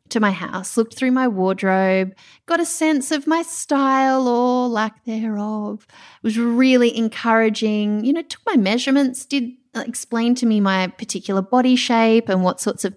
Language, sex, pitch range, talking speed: English, female, 205-270 Hz, 170 wpm